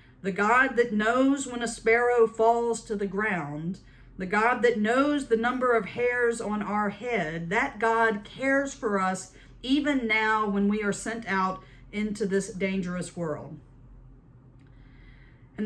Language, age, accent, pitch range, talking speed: English, 50-69, American, 160-225 Hz, 150 wpm